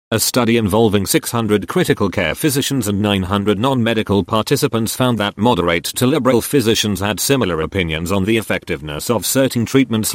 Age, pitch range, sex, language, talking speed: 40-59, 100-125 Hz, male, English, 155 wpm